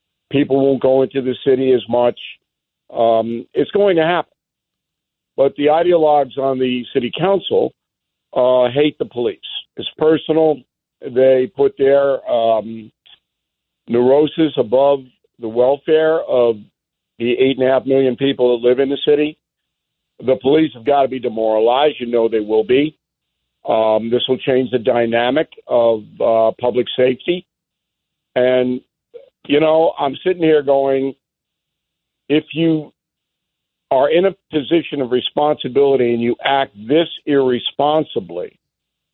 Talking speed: 135 wpm